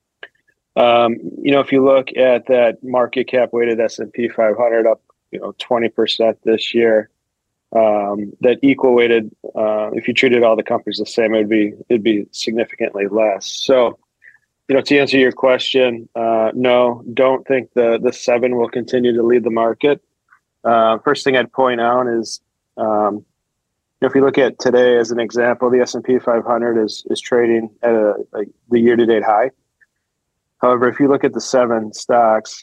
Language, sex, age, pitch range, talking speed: English, male, 30-49, 110-125 Hz, 180 wpm